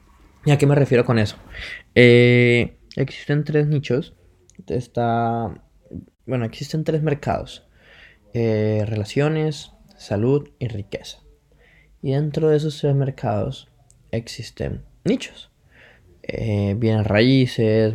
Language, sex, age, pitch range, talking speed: Spanish, male, 20-39, 110-135 Hz, 105 wpm